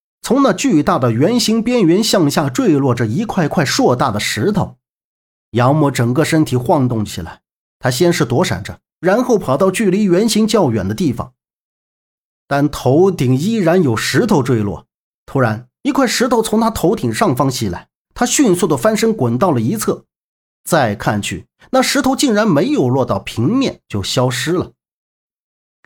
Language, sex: Chinese, male